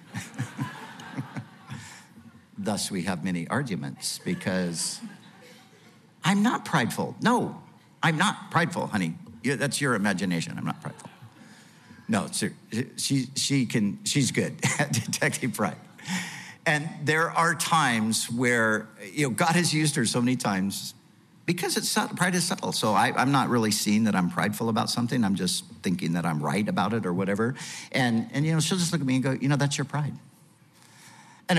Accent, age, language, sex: American, 50-69, English, male